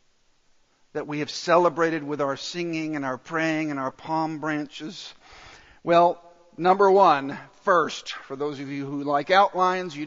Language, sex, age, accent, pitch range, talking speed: English, male, 50-69, American, 170-255 Hz, 155 wpm